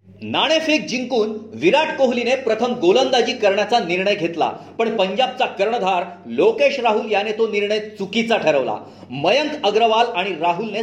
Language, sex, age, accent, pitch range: Marathi, male, 40-59, native, 195-245 Hz